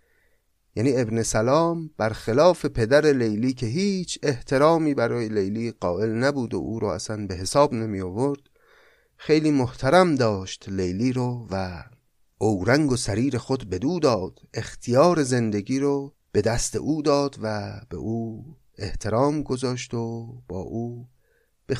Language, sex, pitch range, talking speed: Persian, male, 110-145 Hz, 140 wpm